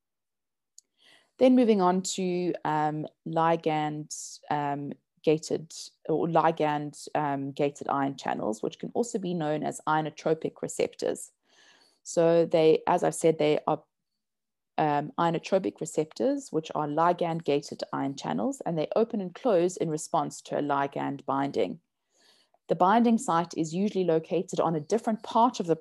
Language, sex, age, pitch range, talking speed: English, female, 20-39, 150-195 Hz, 135 wpm